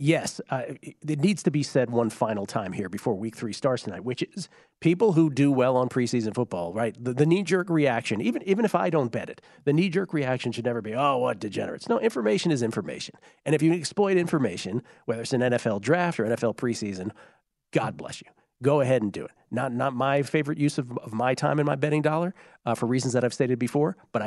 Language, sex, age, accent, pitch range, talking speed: English, male, 40-59, American, 120-160 Hz, 225 wpm